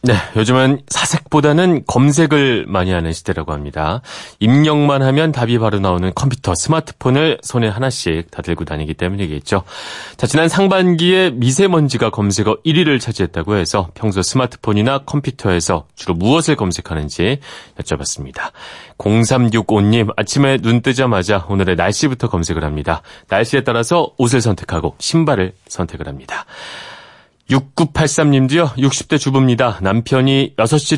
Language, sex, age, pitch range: Korean, male, 30-49, 90-135 Hz